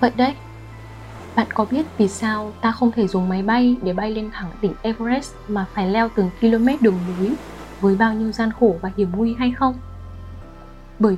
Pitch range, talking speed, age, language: 190-235 Hz, 200 wpm, 10-29, Vietnamese